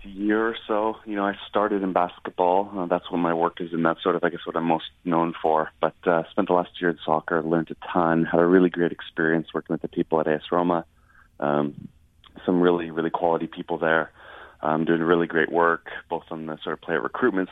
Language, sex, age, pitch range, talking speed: English, male, 30-49, 80-95 Hz, 235 wpm